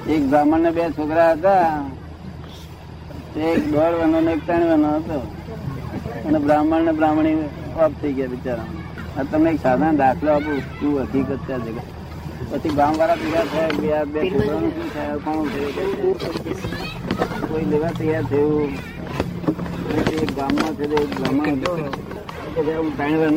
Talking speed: 75 wpm